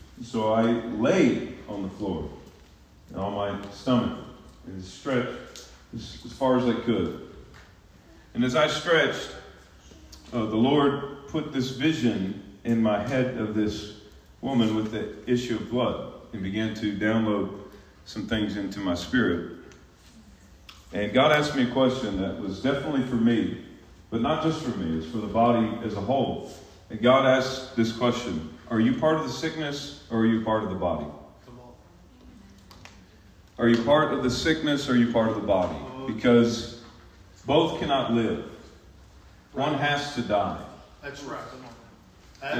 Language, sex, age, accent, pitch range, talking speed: English, male, 40-59, American, 100-130 Hz, 155 wpm